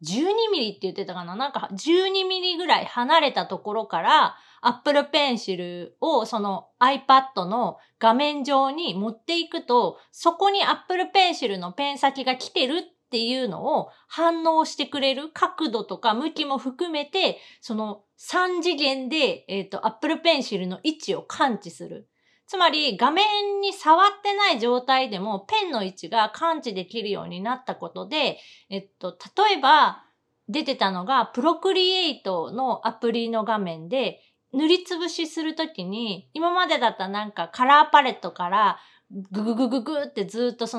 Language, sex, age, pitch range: Japanese, female, 30-49, 220-330 Hz